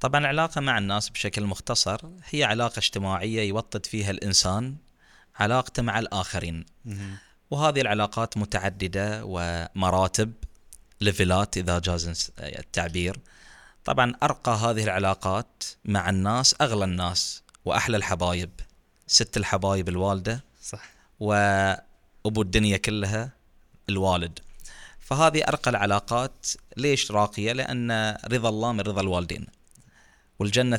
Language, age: Arabic, 20-39